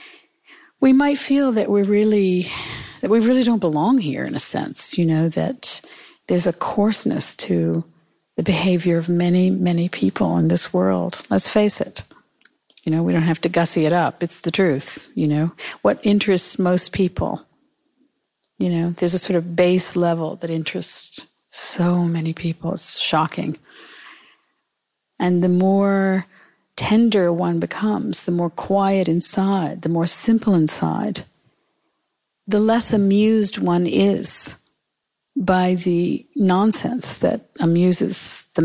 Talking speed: 145 wpm